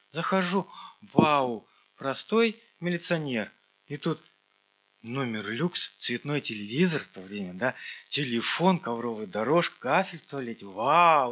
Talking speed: 110 wpm